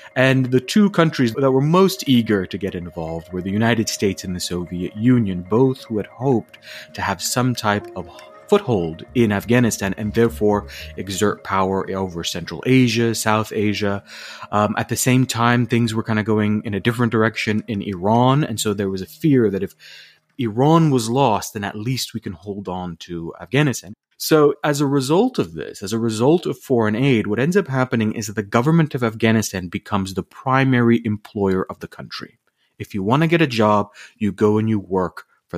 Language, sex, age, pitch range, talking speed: English, male, 30-49, 100-130 Hz, 200 wpm